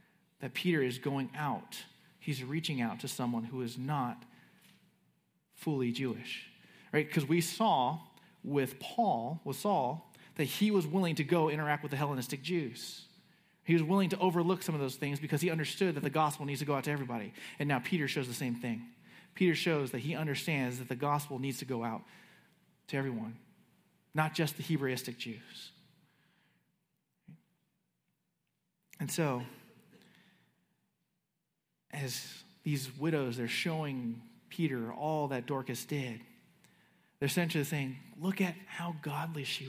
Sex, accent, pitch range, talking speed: male, American, 130-170 Hz, 155 wpm